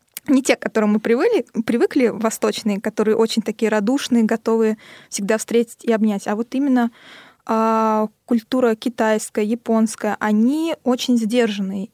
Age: 20-39